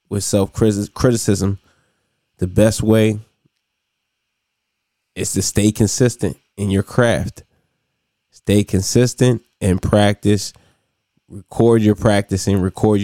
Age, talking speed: 20-39, 90 wpm